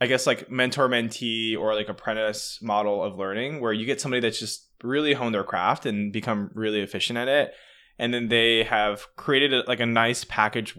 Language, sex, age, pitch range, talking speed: English, male, 20-39, 105-130 Hz, 205 wpm